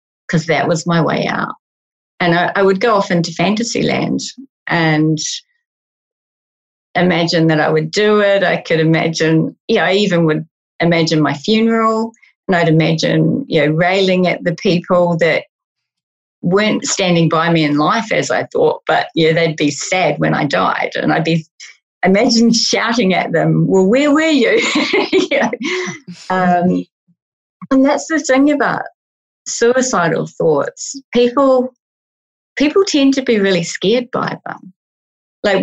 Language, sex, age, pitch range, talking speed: English, female, 30-49, 165-230 Hz, 150 wpm